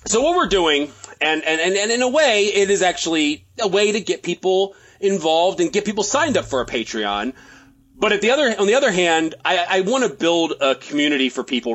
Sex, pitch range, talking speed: male, 140-200 Hz, 225 wpm